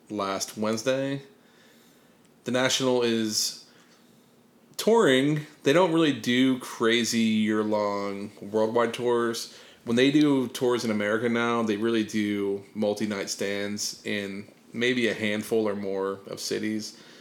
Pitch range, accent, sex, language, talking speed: 105-120 Hz, American, male, English, 120 wpm